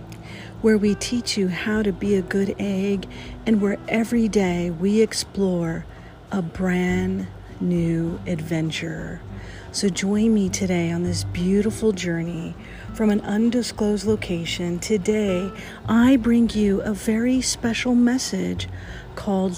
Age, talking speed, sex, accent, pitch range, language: 40-59, 125 wpm, female, American, 175-210 Hz, English